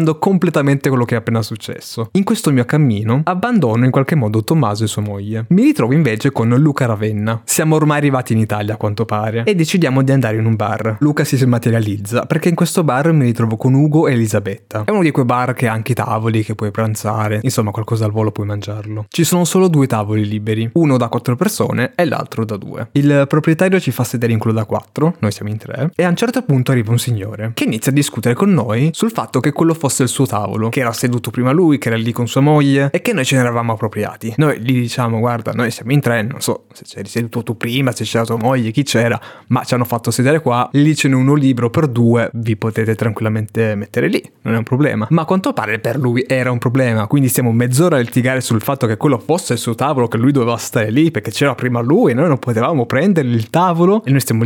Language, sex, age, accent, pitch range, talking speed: Italian, male, 20-39, native, 115-150 Hz, 245 wpm